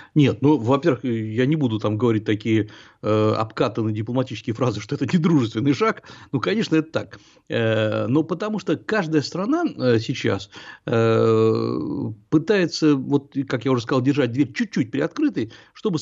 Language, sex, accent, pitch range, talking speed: Russian, male, native, 115-160 Hz, 155 wpm